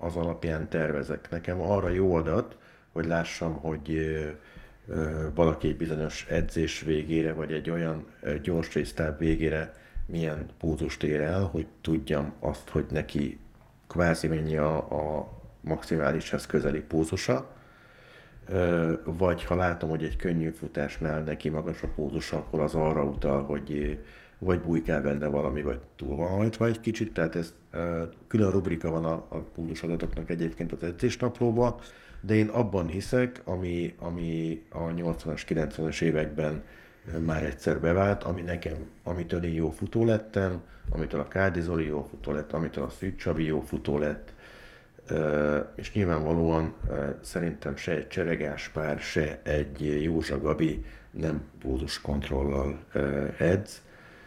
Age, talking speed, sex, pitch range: 60-79, 135 wpm, male, 75-85 Hz